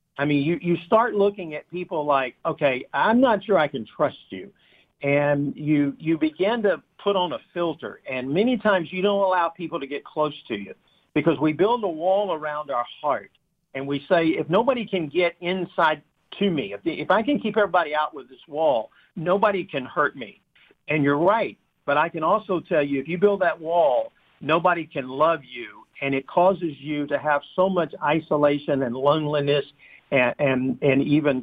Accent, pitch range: American, 140-180 Hz